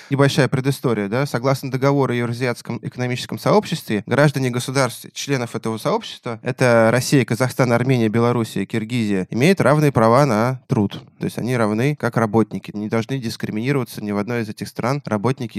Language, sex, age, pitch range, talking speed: Russian, male, 20-39, 110-135 Hz, 160 wpm